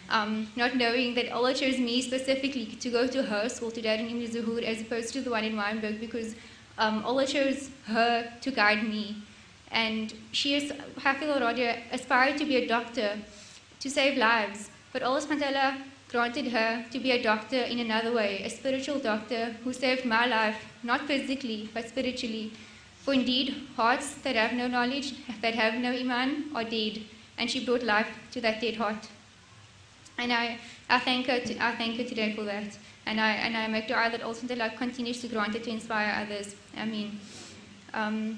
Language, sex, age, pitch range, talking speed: English, female, 20-39, 225-260 Hz, 180 wpm